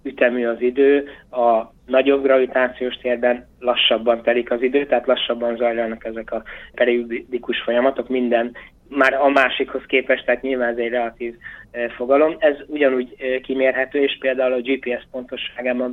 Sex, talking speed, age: male, 140 wpm, 20-39